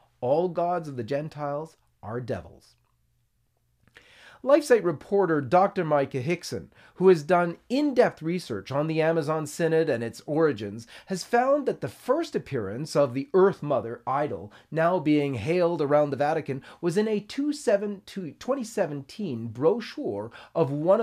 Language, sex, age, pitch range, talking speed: English, male, 40-59, 145-200 Hz, 135 wpm